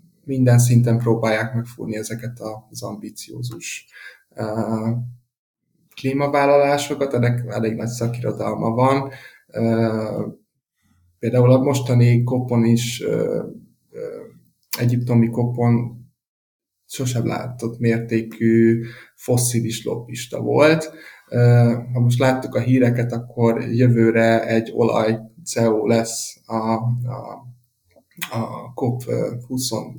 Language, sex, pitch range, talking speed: Hungarian, male, 115-130 Hz, 90 wpm